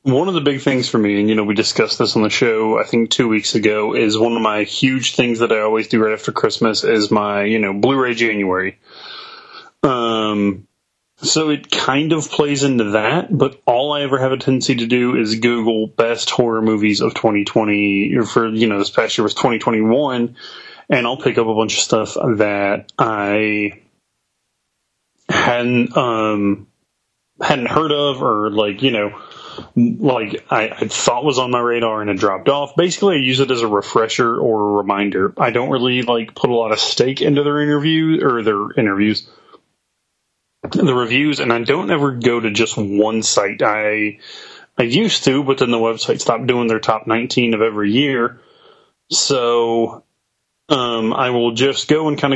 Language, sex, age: English, male, 30-49